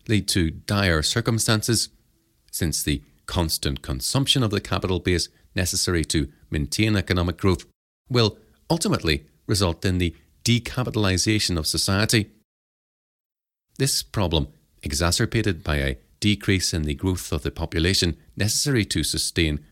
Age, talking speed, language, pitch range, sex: 40-59, 120 wpm, English, 80-110 Hz, male